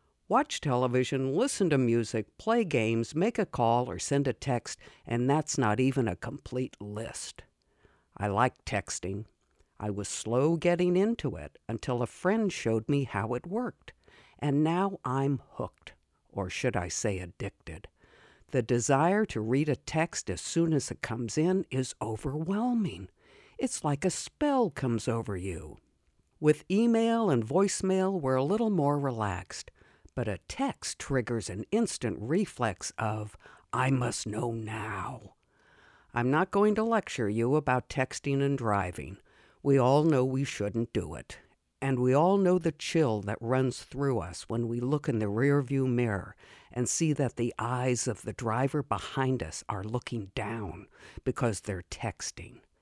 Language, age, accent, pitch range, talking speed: English, 60-79, American, 110-150 Hz, 160 wpm